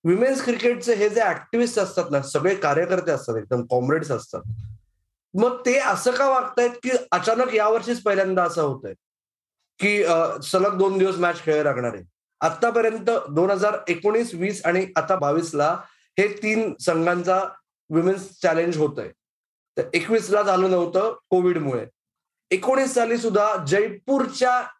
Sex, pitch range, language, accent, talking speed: male, 170-230 Hz, Marathi, native, 145 wpm